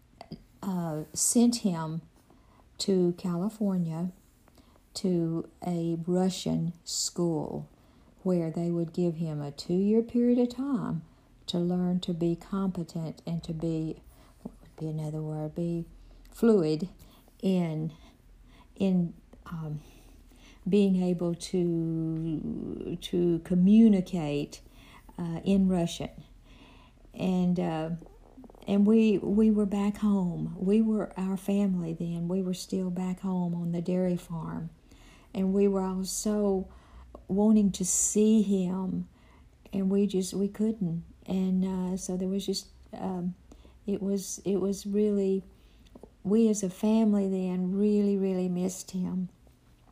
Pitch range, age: 170-200 Hz, 50-69